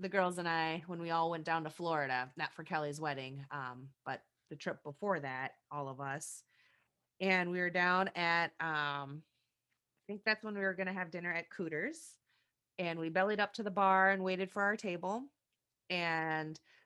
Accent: American